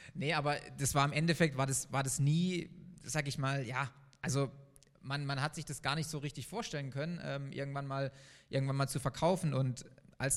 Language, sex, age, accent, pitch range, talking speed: German, male, 20-39, German, 135-155 Hz, 210 wpm